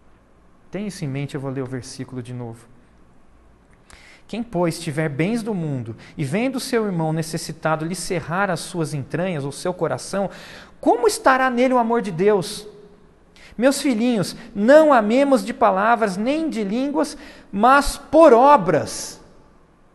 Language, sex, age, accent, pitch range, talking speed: Portuguese, male, 50-69, Brazilian, 130-215 Hz, 145 wpm